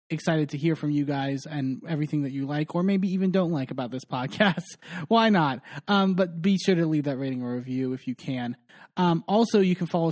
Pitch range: 135-165 Hz